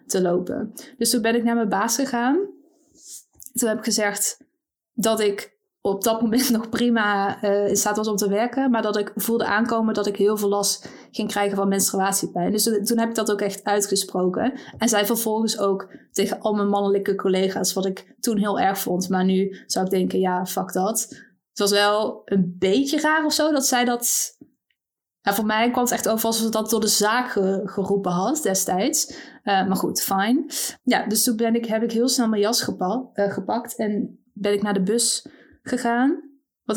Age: 20-39